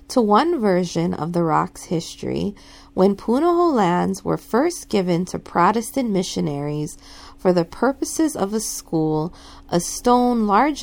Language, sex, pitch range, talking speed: English, female, 160-230 Hz, 140 wpm